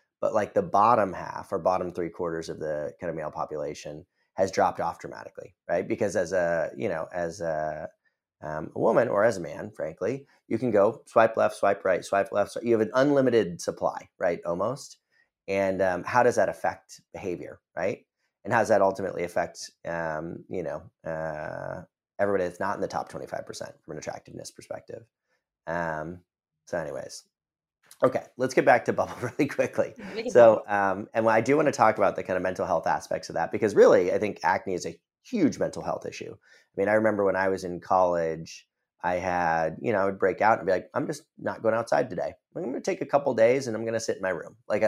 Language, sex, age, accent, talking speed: English, male, 30-49, American, 220 wpm